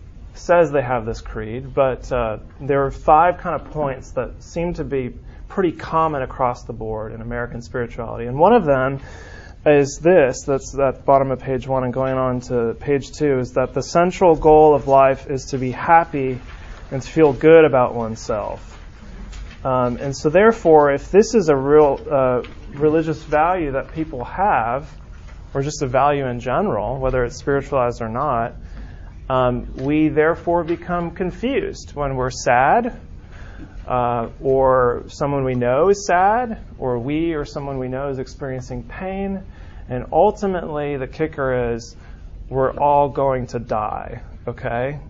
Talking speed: 160 wpm